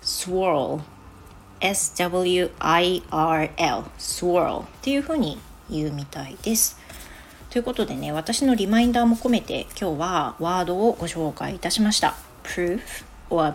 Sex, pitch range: female, 160-220 Hz